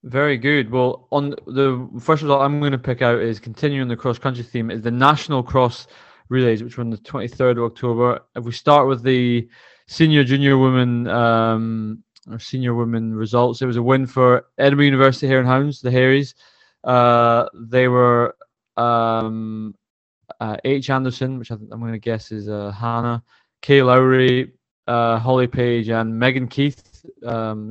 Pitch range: 115-130 Hz